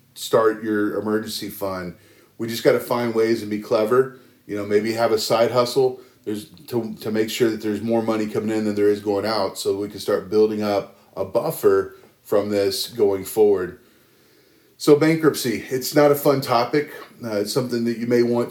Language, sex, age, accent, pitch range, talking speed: English, male, 30-49, American, 105-125 Hz, 200 wpm